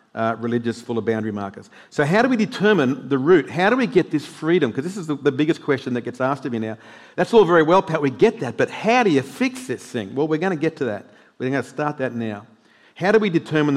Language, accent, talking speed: English, Australian, 280 wpm